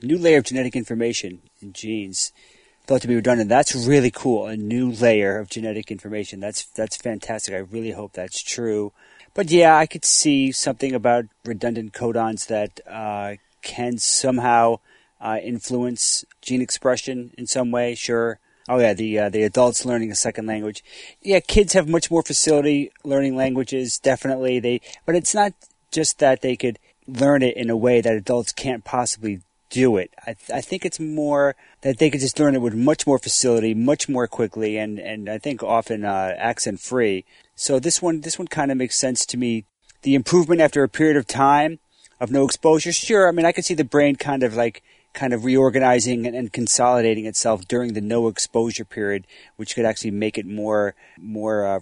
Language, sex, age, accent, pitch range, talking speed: English, male, 30-49, American, 110-135 Hz, 190 wpm